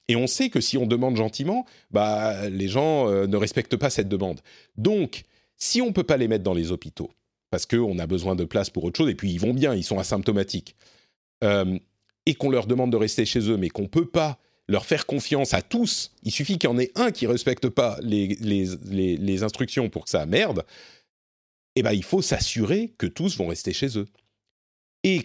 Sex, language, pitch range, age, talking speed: male, French, 95-130 Hz, 40-59, 230 wpm